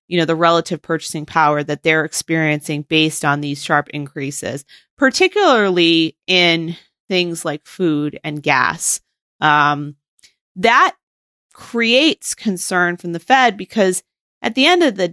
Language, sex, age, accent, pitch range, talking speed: English, female, 30-49, American, 155-205 Hz, 135 wpm